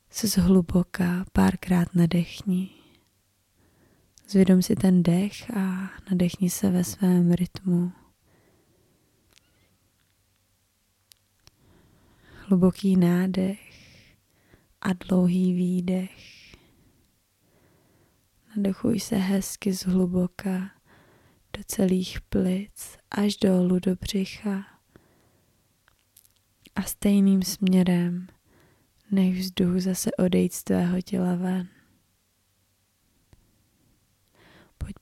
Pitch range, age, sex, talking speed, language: 175-195 Hz, 20-39, female, 70 wpm, Czech